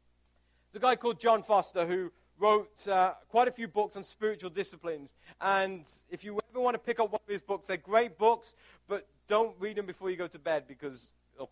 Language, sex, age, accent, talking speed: English, male, 40-59, British, 215 wpm